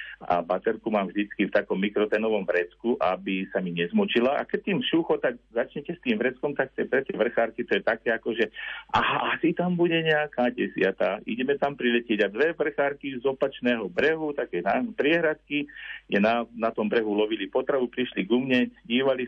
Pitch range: 105-140 Hz